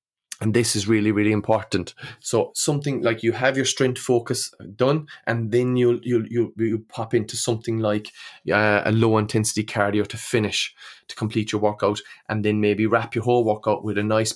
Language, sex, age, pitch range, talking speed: English, male, 20-39, 110-120 Hz, 190 wpm